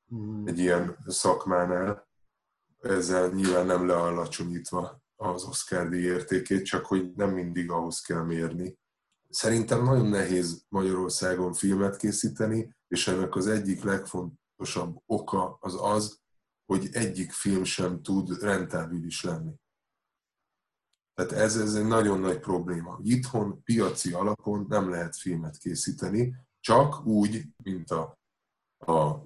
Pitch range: 90-105 Hz